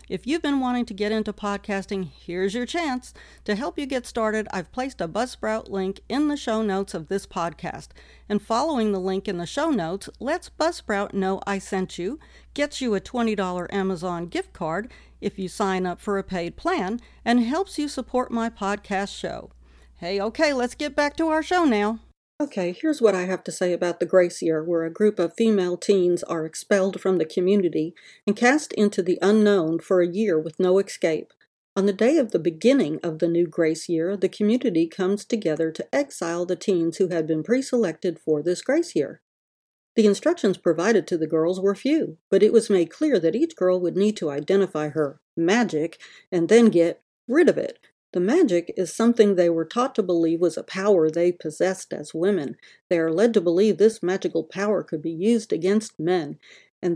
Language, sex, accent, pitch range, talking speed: English, female, American, 175-230 Hz, 200 wpm